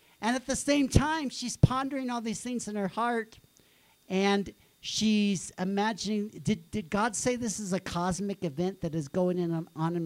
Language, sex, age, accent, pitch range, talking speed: English, male, 50-69, American, 145-210 Hz, 185 wpm